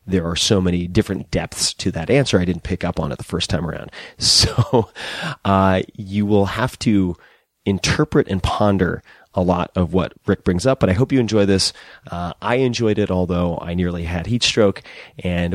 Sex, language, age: male, English, 30-49